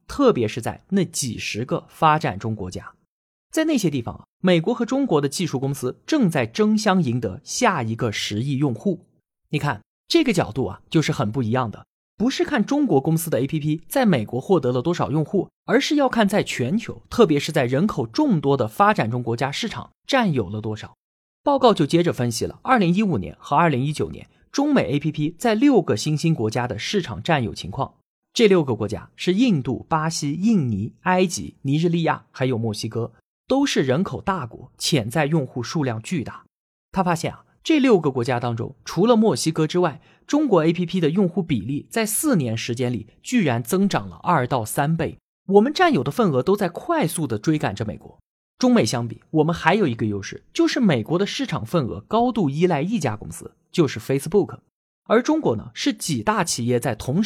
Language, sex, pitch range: Chinese, male, 125-205 Hz